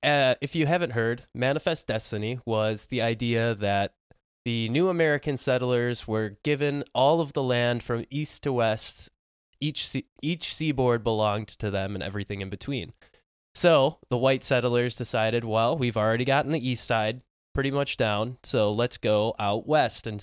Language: English